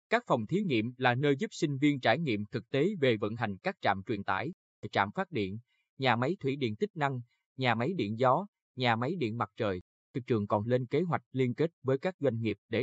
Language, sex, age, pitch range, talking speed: Vietnamese, male, 20-39, 110-150 Hz, 240 wpm